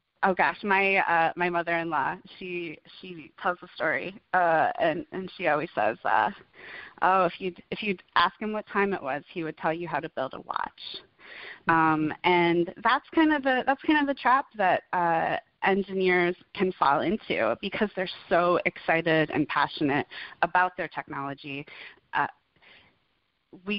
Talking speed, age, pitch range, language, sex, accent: 165 wpm, 20-39, 160-195 Hz, English, female, American